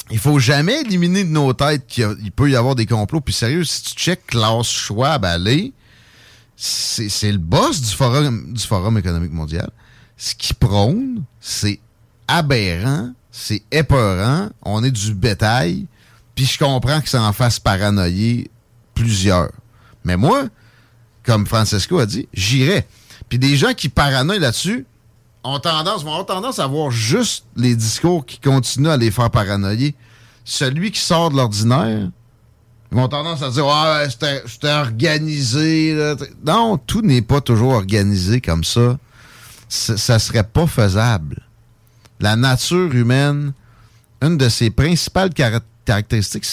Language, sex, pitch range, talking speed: French, male, 115-145 Hz, 150 wpm